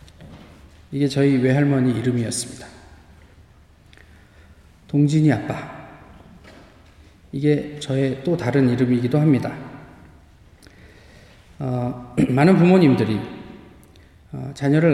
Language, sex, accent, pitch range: Korean, male, native, 115-155 Hz